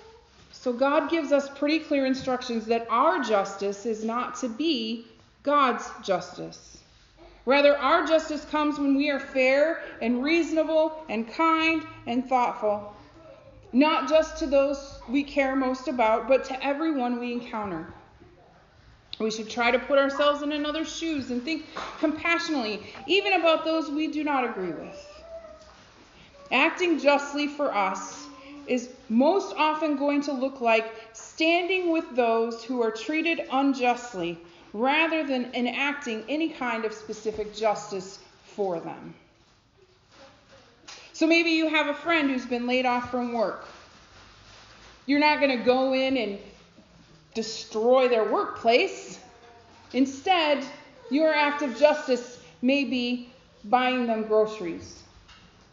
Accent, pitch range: American, 235-305 Hz